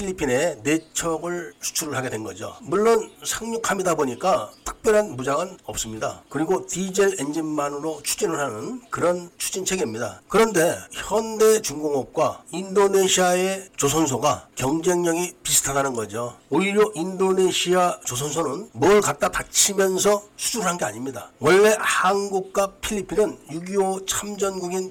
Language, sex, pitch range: Korean, male, 150-195 Hz